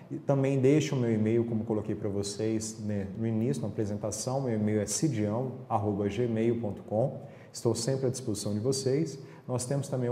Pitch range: 110-130 Hz